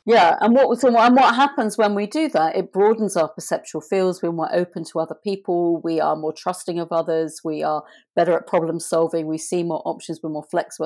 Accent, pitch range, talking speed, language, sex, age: British, 165-200 Hz, 220 wpm, English, female, 40-59